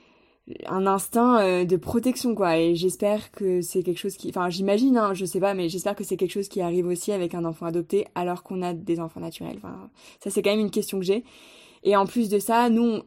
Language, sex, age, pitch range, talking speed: French, female, 20-39, 175-205 Hz, 240 wpm